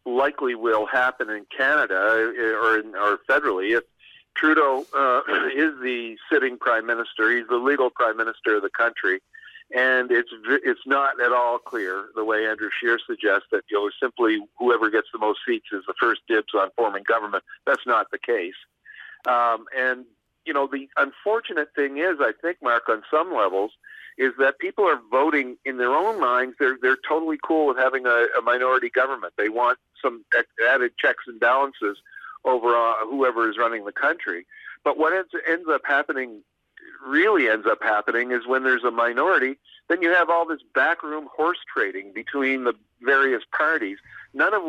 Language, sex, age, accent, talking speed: English, male, 50-69, American, 180 wpm